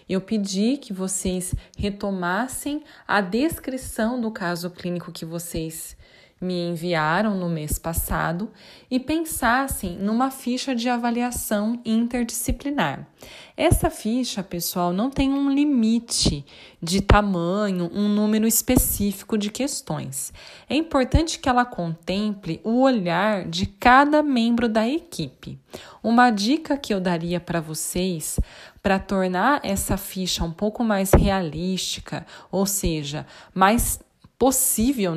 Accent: Brazilian